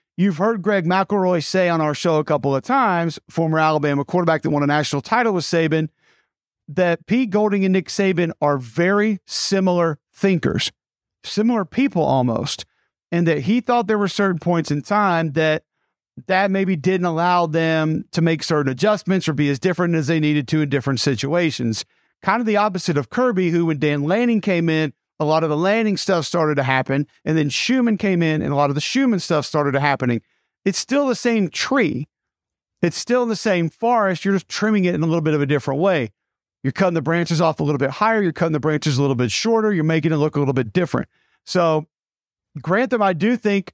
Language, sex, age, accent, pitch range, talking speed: English, male, 50-69, American, 150-195 Hz, 210 wpm